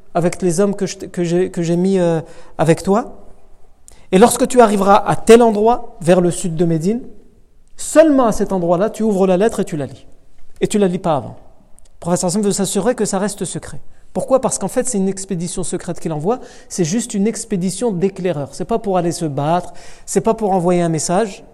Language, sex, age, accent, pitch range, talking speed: French, male, 50-69, French, 175-220 Hz, 230 wpm